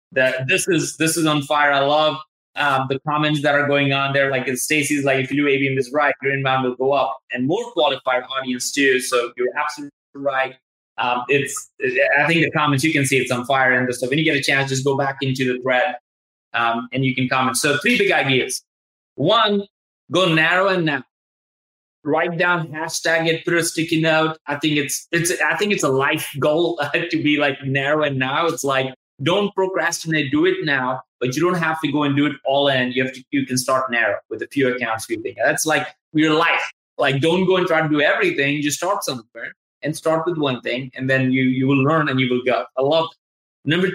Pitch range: 130-160 Hz